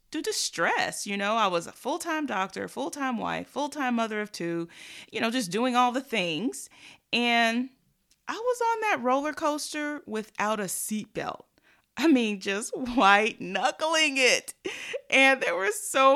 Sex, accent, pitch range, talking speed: female, American, 195-290 Hz, 160 wpm